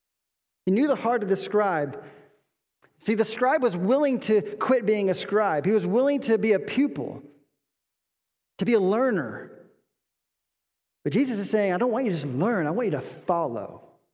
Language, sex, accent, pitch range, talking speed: English, male, American, 180-260 Hz, 185 wpm